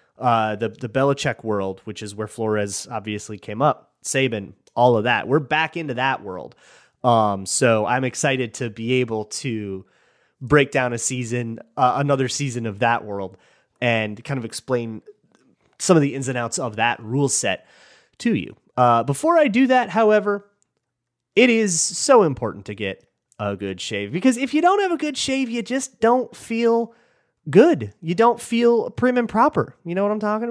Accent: American